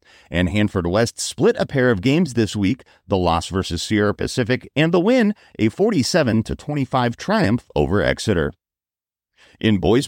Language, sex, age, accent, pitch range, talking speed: English, male, 40-59, American, 95-135 Hz, 150 wpm